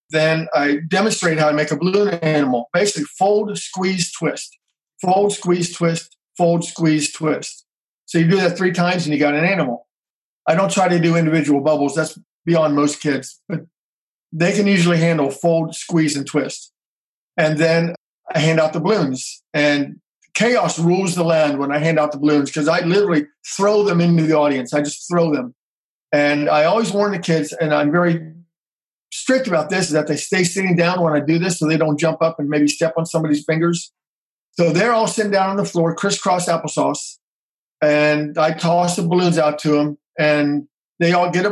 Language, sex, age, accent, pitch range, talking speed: English, male, 50-69, American, 150-175 Hz, 195 wpm